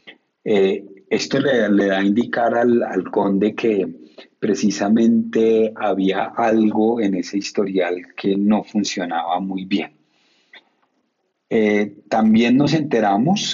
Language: Spanish